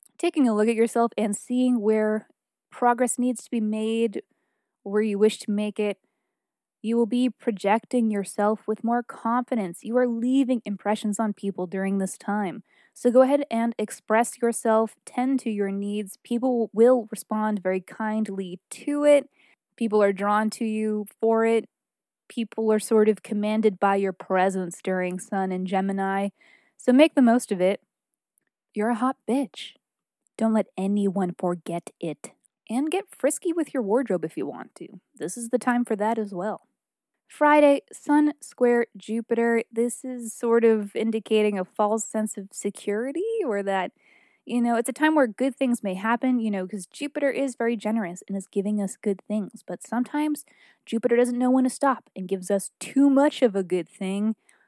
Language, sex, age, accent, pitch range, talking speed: English, female, 20-39, American, 205-250 Hz, 175 wpm